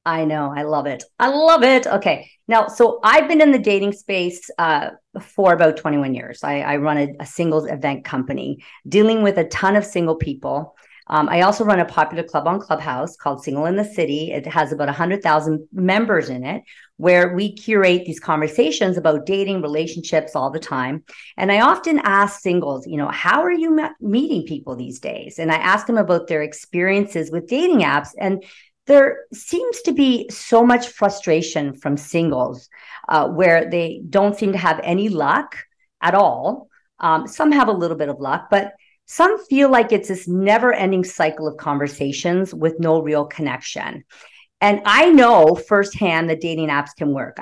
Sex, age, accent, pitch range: female, 40-59, American, 150-210 Hz